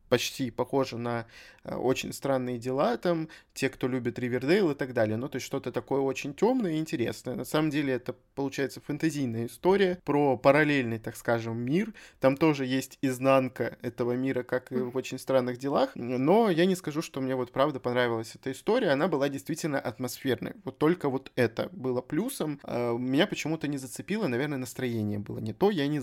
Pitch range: 125-155 Hz